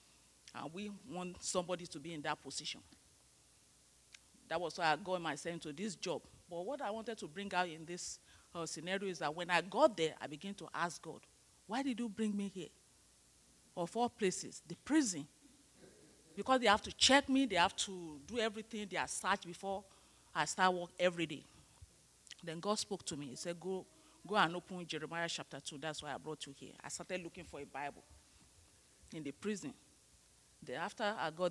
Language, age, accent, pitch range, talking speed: English, 40-59, Nigerian, 150-205 Hz, 195 wpm